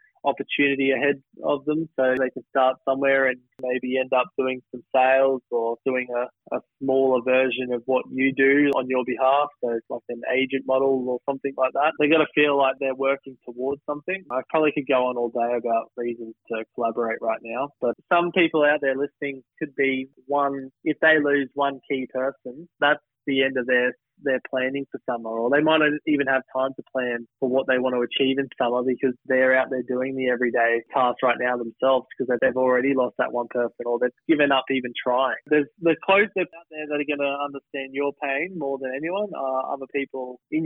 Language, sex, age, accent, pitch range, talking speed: English, male, 20-39, Australian, 125-140 Hz, 215 wpm